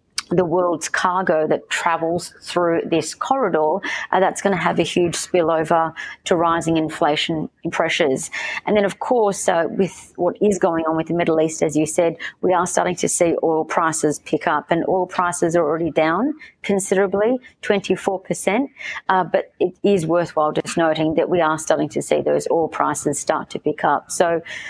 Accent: Australian